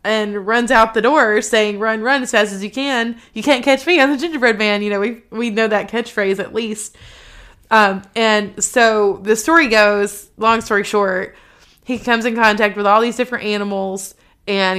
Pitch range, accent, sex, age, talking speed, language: 185-220 Hz, American, female, 20-39, 200 wpm, English